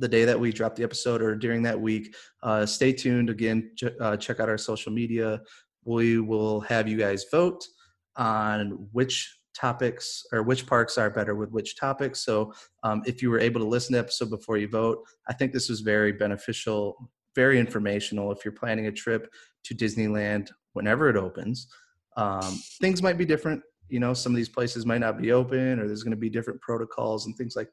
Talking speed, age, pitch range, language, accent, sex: 205 wpm, 30-49, 105-125 Hz, English, American, male